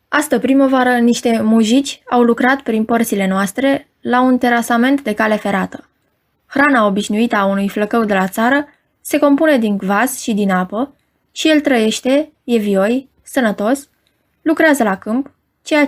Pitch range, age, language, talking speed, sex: 215-280 Hz, 20-39, Romanian, 145 wpm, female